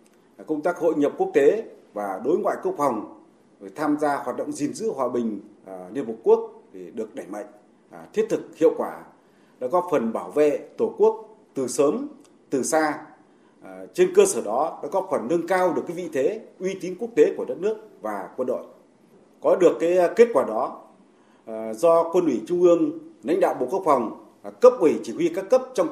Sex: male